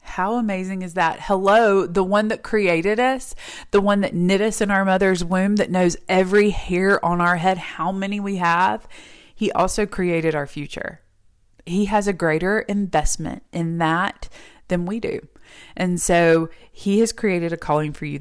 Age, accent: 20-39, American